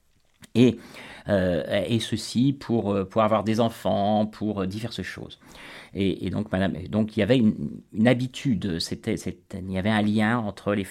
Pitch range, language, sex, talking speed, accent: 95-120 Hz, French, male, 175 wpm, French